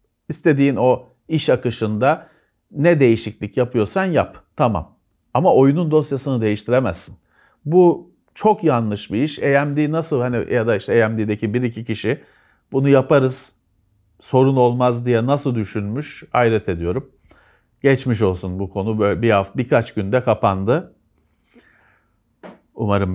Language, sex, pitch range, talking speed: Turkish, male, 110-150 Hz, 120 wpm